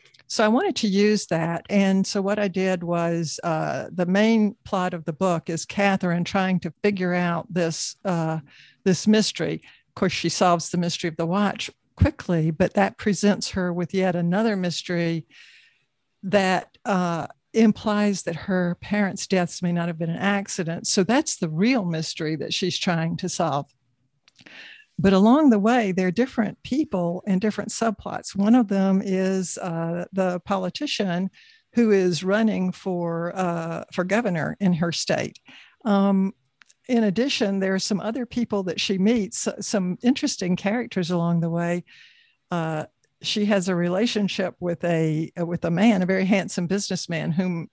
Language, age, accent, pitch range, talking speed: English, 60-79, American, 170-205 Hz, 165 wpm